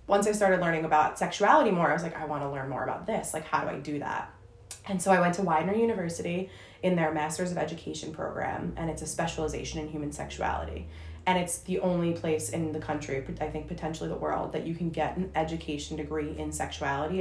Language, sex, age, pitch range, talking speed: English, female, 20-39, 155-190 Hz, 225 wpm